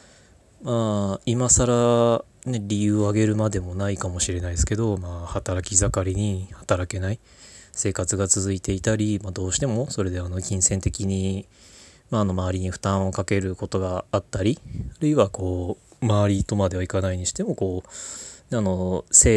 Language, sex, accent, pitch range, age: Japanese, male, native, 95-110 Hz, 20-39